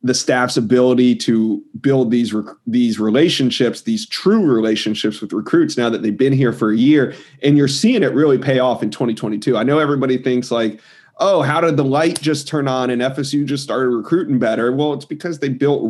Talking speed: 205 wpm